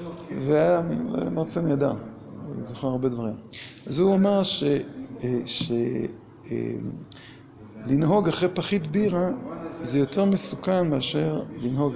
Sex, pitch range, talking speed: male, 135-195 Hz, 105 wpm